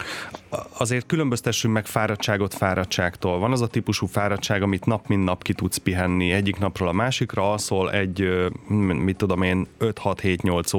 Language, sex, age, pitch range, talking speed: Hungarian, male, 30-49, 95-110 Hz, 150 wpm